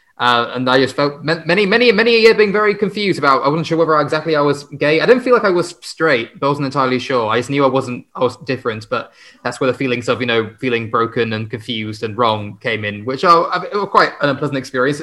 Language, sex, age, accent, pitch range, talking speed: English, male, 20-39, British, 120-155 Hz, 270 wpm